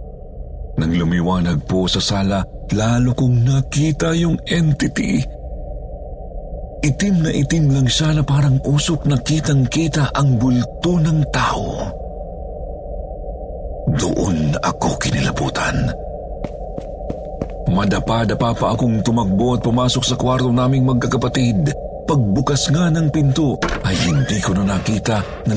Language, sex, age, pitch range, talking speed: Filipino, male, 50-69, 95-145 Hz, 115 wpm